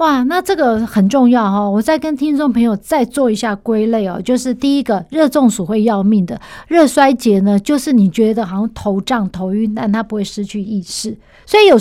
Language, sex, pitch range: Chinese, female, 205-265 Hz